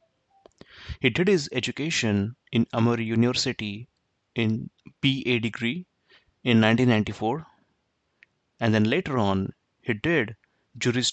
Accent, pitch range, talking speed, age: native, 110-130 Hz, 100 wpm, 30-49